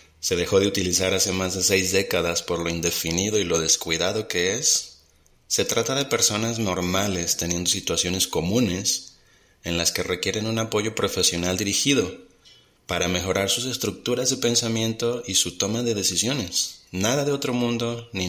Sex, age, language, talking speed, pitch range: male, 30-49, Spanish, 160 wpm, 90-110 Hz